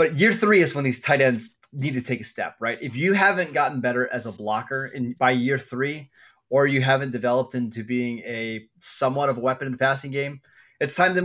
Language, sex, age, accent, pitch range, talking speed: English, male, 20-39, American, 125-165 Hz, 235 wpm